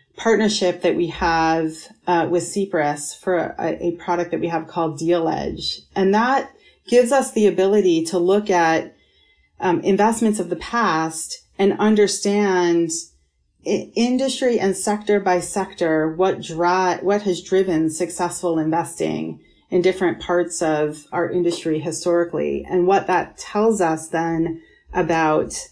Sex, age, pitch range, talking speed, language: female, 30-49, 165-195 Hz, 140 wpm, English